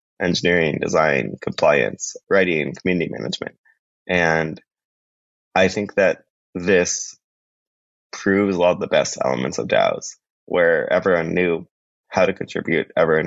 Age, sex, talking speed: 20-39, male, 120 wpm